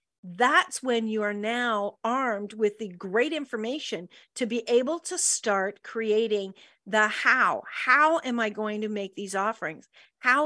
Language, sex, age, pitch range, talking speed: English, female, 40-59, 220-305 Hz, 155 wpm